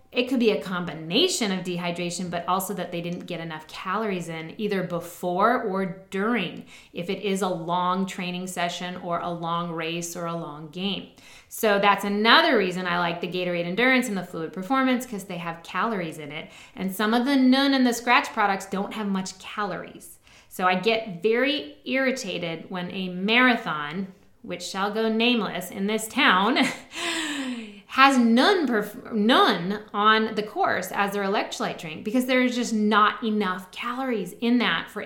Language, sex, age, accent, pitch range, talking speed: English, female, 20-39, American, 185-240 Hz, 175 wpm